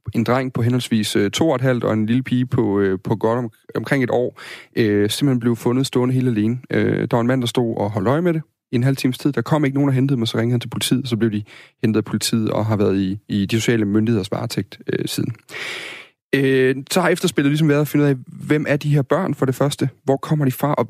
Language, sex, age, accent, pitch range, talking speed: Danish, male, 30-49, native, 110-140 Hz, 275 wpm